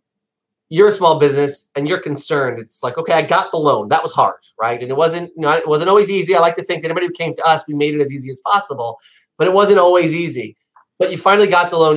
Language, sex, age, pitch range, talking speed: English, male, 30-49, 135-175 Hz, 275 wpm